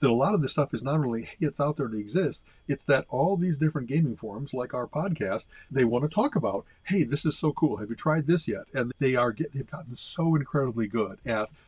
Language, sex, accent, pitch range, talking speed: English, male, American, 110-155 Hz, 260 wpm